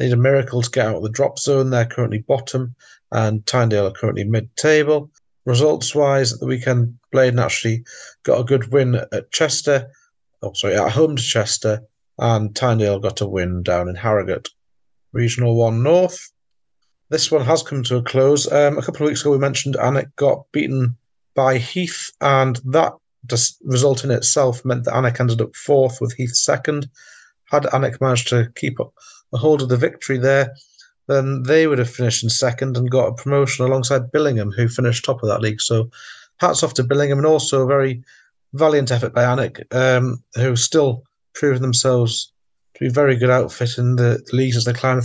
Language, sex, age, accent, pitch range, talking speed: English, male, 40-59, British, 115-135 Hz, 190 wpm